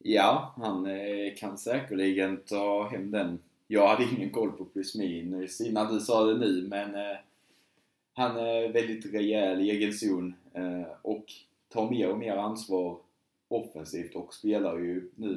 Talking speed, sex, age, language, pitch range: 150 wpm, male, 20-39, Swedish, 85-100 Hz